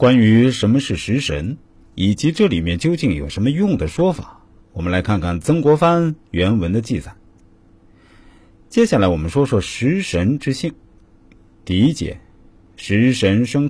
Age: 50-69